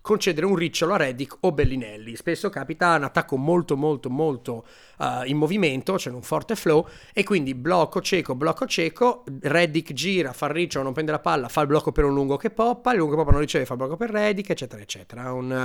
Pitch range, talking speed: 130-175 Hz, 225 wpm